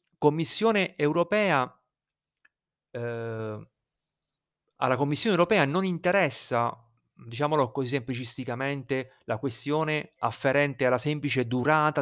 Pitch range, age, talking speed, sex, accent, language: 120-165 Hz, 40-59, 85 wpm, male, native, Italian